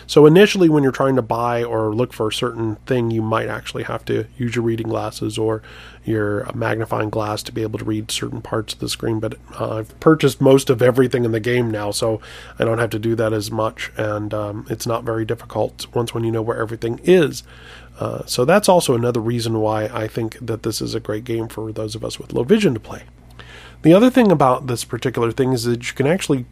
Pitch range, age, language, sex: 110-140 Hz, 20-39, English, male